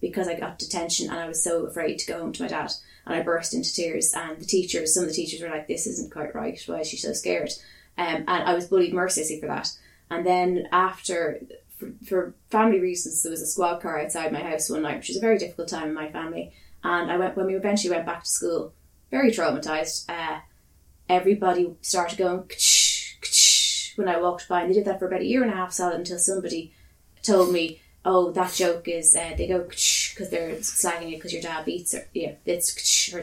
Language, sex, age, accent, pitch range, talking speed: English, female, 20-39, Irish, 165-195 Hz, 230 wpm